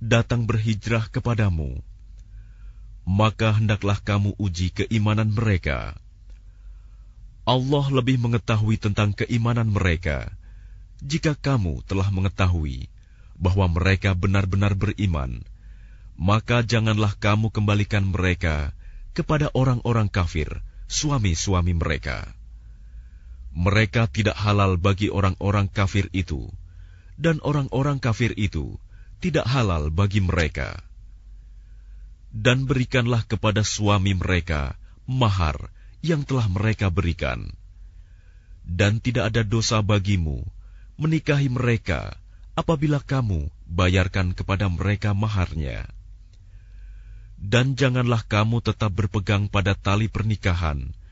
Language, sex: Indonesian, male